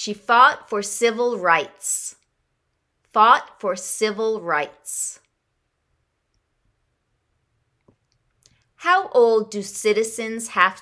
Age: 30-49